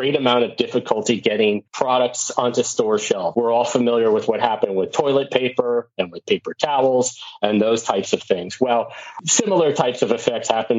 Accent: American